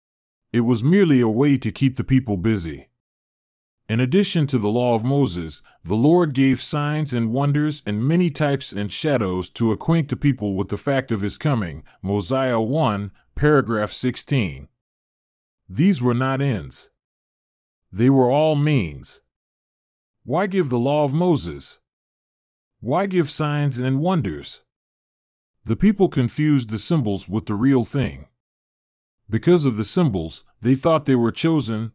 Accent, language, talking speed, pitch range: American, English, 150 wpm, 105-145 Hz